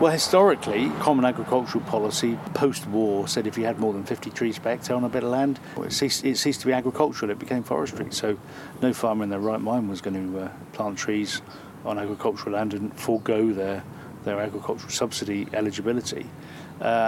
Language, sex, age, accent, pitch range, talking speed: English, male, 50-69, British, 105-125 Hz, 195 wpm